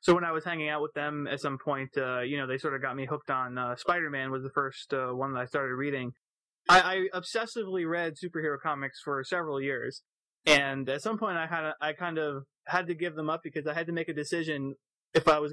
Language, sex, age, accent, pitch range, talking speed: English, male, 20-39, American, 145-180 Hz, 255 wpm